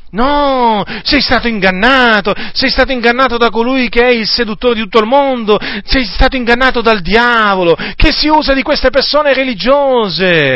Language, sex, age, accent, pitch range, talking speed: Italian, male, 40-59, native, 205-255 Hz, 165 wpm